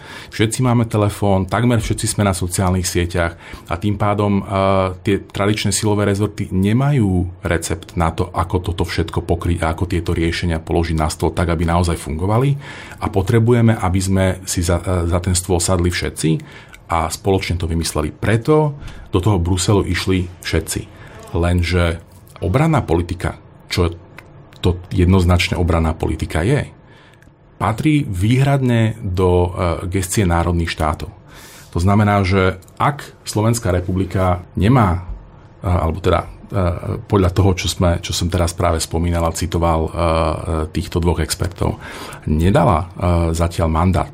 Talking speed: 145 wpm